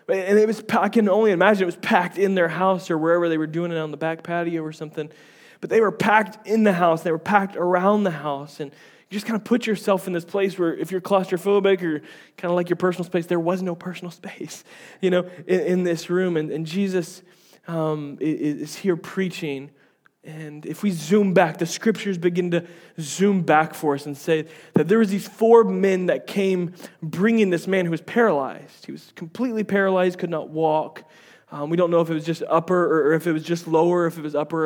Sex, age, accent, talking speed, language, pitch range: male, 20-39, American, 230 wpm, English, 155-190 Hz